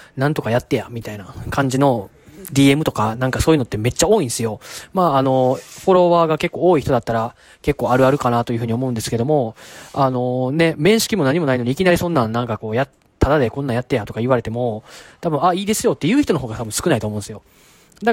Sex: male